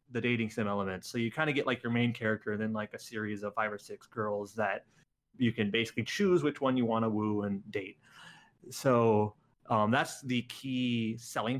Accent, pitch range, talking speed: American, 110-130 Hz, 205 wpm